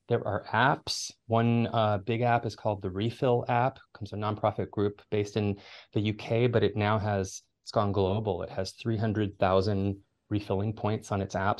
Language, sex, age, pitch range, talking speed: English, male, 30-49, 100-125 Hz, 190 wpm